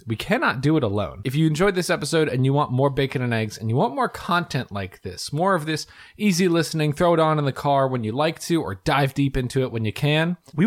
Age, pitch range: 20-39, 110-160 Hz